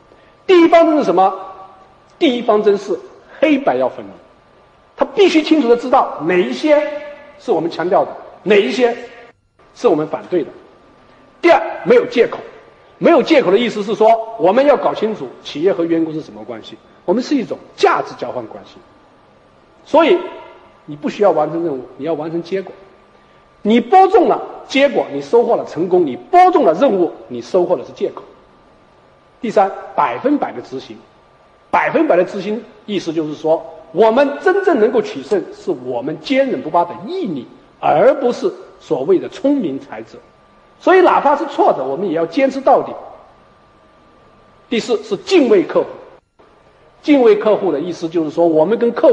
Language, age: Chinese, 50-69